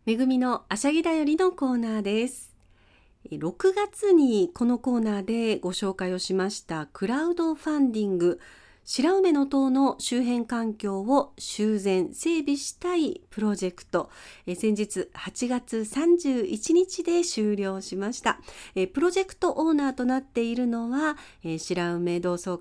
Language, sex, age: Japanese, female, 40-59